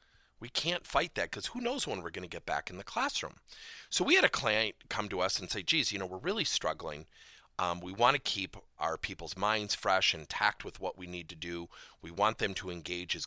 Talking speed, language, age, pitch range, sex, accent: 250 wpm, English, 40-59, 85-135 Hz, male, American